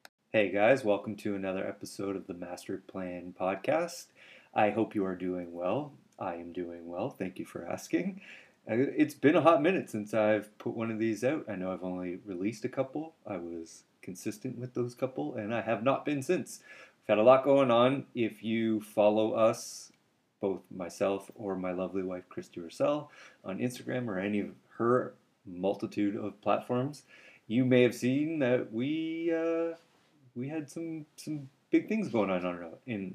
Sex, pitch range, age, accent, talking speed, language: male, 100-145 Hz, 30-49, American, 180 wpm, English